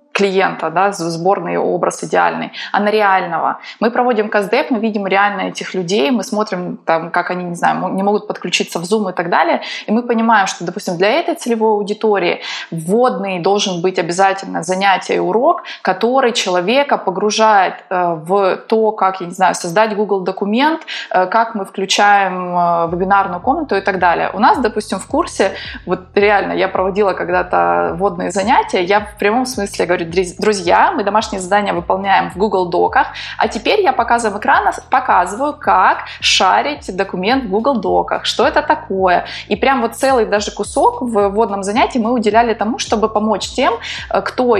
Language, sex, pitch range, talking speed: Russian, female, 185-225 Hz, 165 wpm